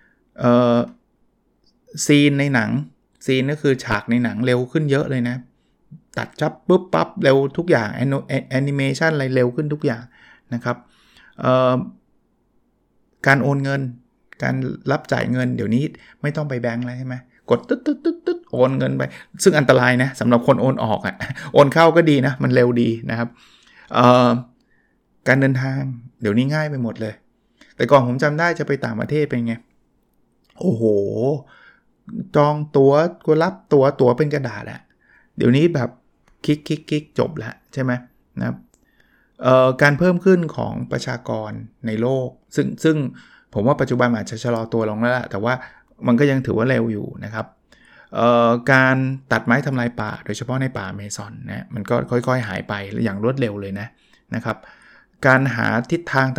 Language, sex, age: Thai, male, 20-39